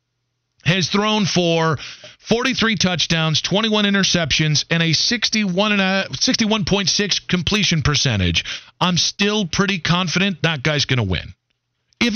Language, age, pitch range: English, 40-59, 140-195 Hz